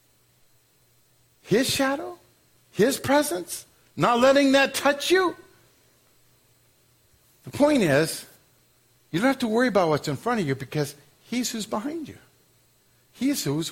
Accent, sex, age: American, male, 50-69